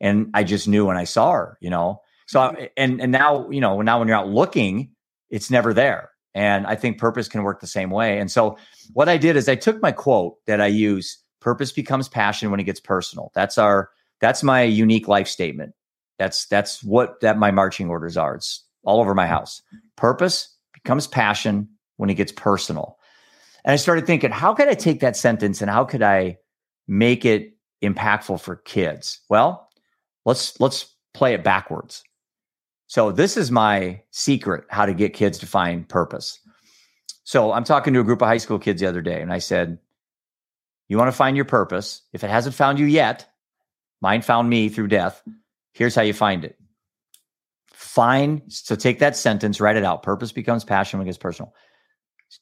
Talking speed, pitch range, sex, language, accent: 195 wpm, 100-130 Hz, male, English, American